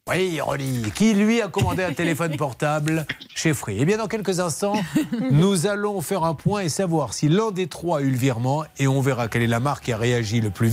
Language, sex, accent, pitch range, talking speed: French, male, French, 130-185 Hz, 245 wpm